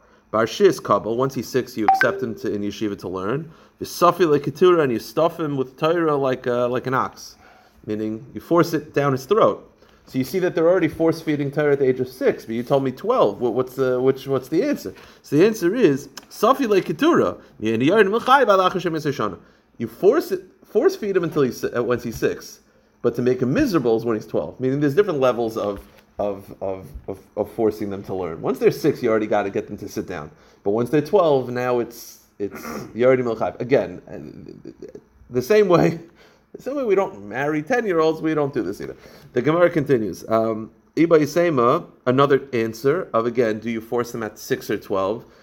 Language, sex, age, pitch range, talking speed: English, male, 30-49, 110-160 Hz, 210 wpm